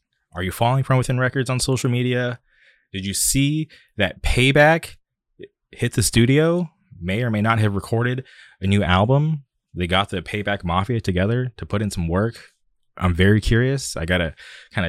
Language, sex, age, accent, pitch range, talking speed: English, male, 20-39, American, 90-110 Hz, 175 wpm